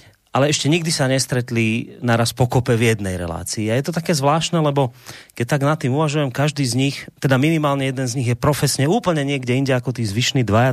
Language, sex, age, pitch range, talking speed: Slovak, male, 30-49, 105-140 Hz, 215 wpm